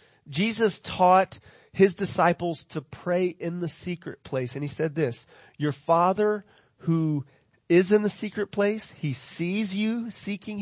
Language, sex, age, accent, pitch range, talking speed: English, male, 30-49, American, 130-180 Hz, 145 wpm